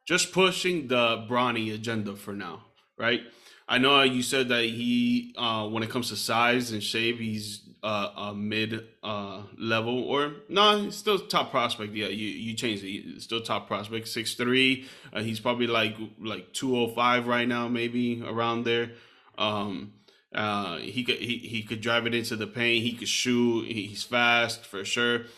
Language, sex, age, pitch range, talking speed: English, male, 20-39, 115-135 Hz, 175 wpm